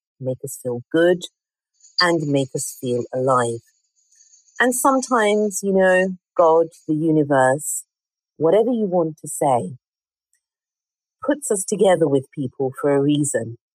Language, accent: English, British